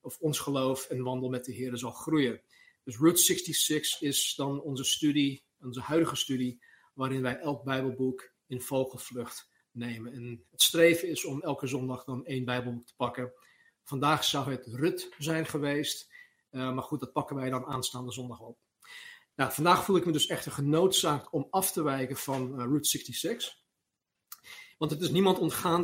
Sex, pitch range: male, 130-165 Hz